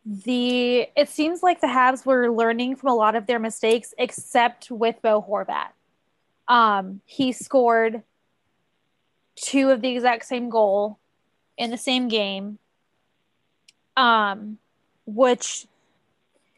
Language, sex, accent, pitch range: English, female, American, 210-245 Hz